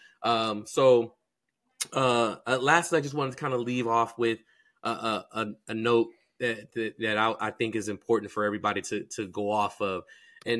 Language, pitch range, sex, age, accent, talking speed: English, 105-125 Hz, male, 20-39, American, 200 wpm